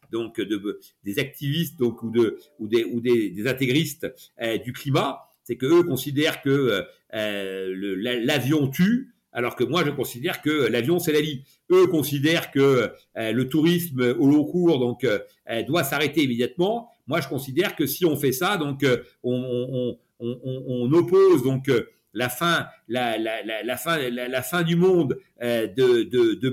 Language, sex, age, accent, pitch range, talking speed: French, male, 50-69, French, 135-180 Hz, 190 wpm